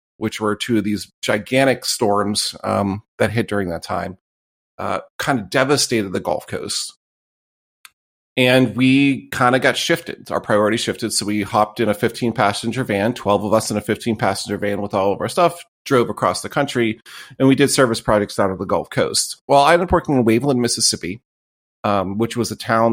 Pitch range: 105-140 Hz